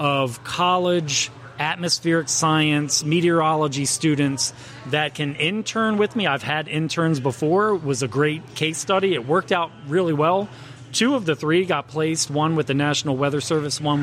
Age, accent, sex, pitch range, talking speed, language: 30-49, American, male, 145-190 Hz, 165 wpm, English